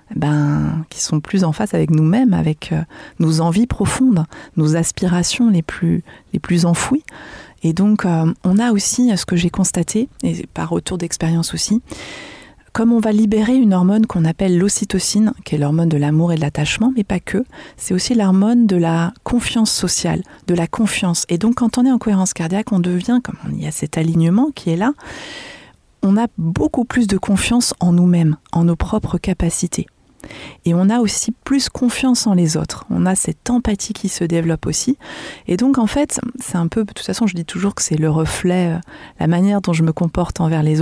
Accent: French